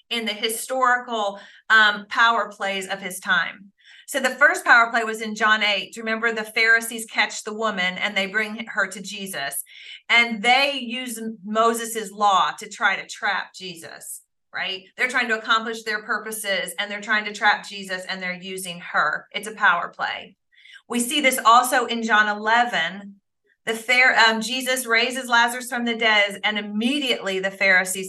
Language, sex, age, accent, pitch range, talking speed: English, female, 40-59, American, 200-235 Hz, 170 wpm